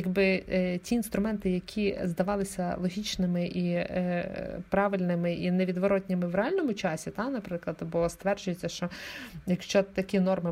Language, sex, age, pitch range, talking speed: Ukrainian, female, 20-39, 185-230 Hz, 130 wpm